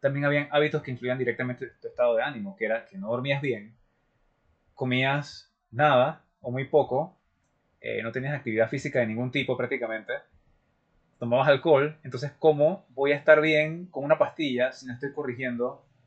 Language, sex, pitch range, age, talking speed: Spanish, male, 120-150 Hz, 20-39, 170 wpm